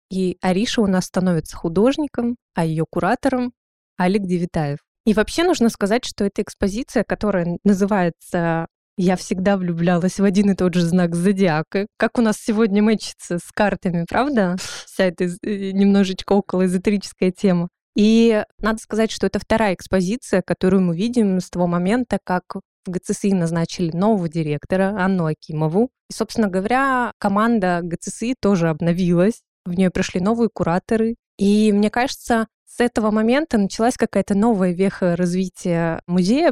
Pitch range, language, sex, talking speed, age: 185-220 Hz, Russian, female, 150 wpm, 20-39